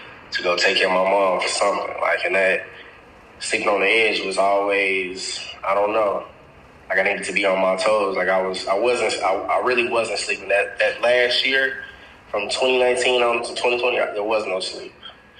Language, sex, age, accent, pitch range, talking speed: English, male, 20-39, American, 95-115 Hz, 205 wpm